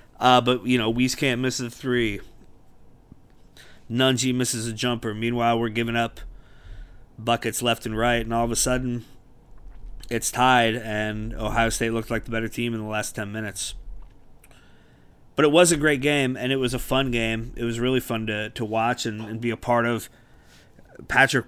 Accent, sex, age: American, male, 30-49